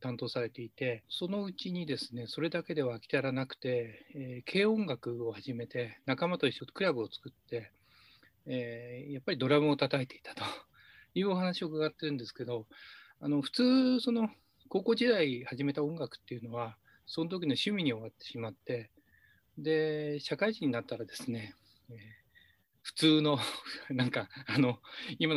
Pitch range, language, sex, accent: 120-155 Hz, Japanese, male, native